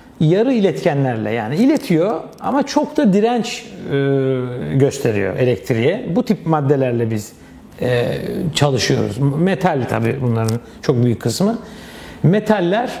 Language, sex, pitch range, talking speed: Turkish, male, 135-210 Hz, 110 wpm